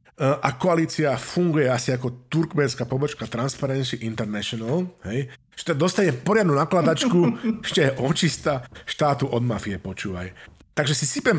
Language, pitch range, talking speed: Slovak, 125-160 Hz, 120 wpm